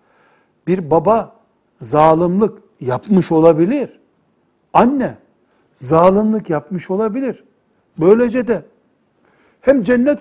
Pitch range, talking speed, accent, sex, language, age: 145-215 Hz, 75 wpm, native, male, Turkish, 60-79